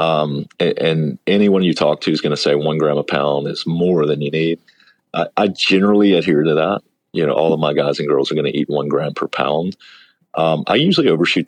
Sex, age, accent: male, 40-59, American